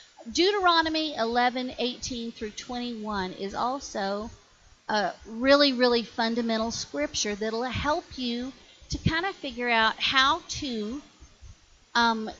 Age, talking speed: 50-69, 105 wpm